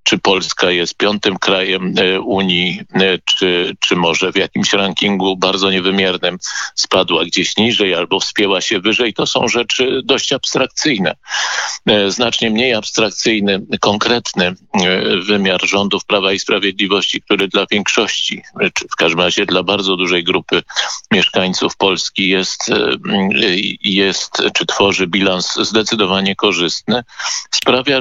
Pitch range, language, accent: 95-115 Hz, Polish, native